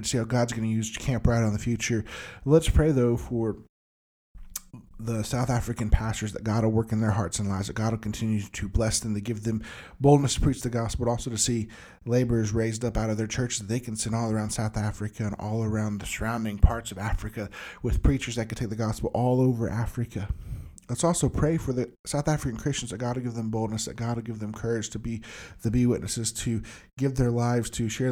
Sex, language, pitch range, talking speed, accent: male, English, 110-125 Hz, 240 wpm, American